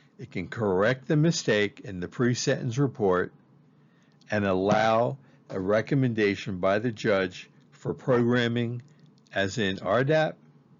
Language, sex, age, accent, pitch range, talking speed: English, male, 60-79, American, 110-145 Hz, 115 wpm